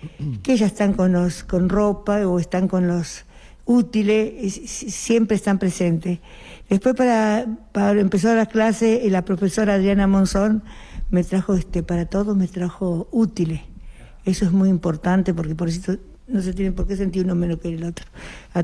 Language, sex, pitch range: Spanish, female, 180-215 Hz